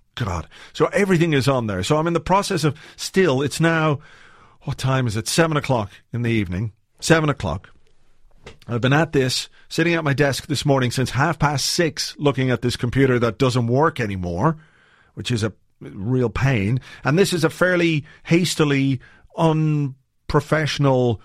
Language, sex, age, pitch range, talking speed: English, male, 40-59, 120-150 Hz, 170 wpm